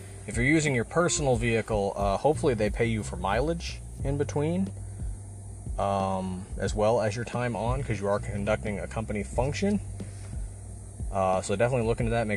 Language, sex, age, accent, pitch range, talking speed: English, male, 30-49, American, 95-115 Hz, 175 wpm